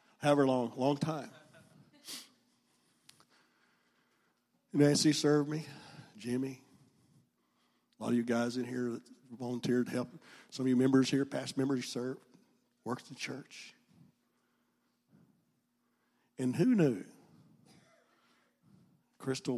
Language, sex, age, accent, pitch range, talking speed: English, male, 50-69, American, 125-165 Hz, 105 wpm